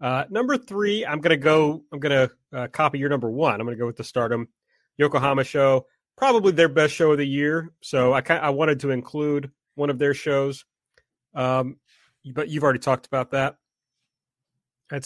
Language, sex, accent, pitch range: English, male, American, 125-150 Hz